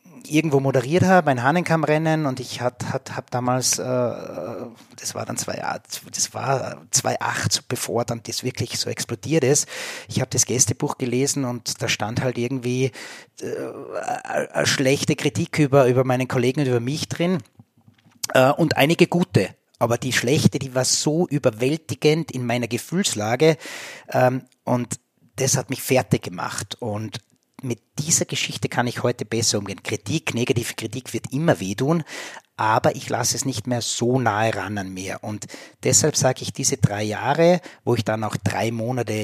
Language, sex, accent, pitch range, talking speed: German, male, Austrian, 120-145 Hz, 170 wpm